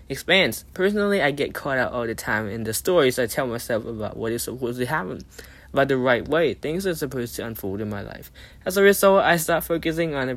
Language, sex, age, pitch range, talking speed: English, male, 10-29, 115-165 Hz, 235 wpm